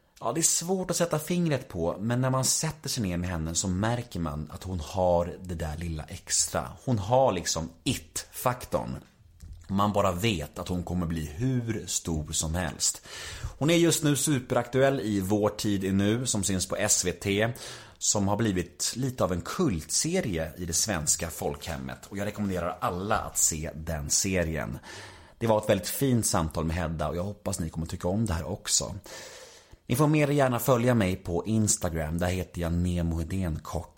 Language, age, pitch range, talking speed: Swedish, 30-49, 85-115 Hz, 185 wpm